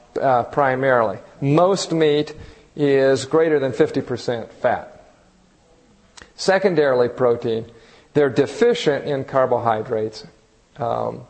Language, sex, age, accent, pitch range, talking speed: English, male, 50-69, American, 120-150 Hz, 85 wpm